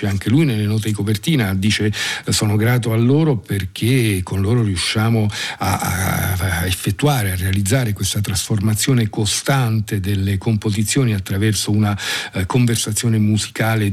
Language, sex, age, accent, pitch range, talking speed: Italian, male, 50-69, native, 100-120 Hz, 130 wpm